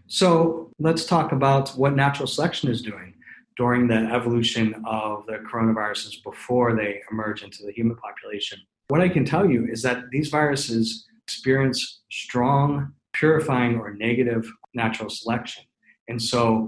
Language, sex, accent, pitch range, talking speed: English, male, American, 110-135 Hz, 145 wpm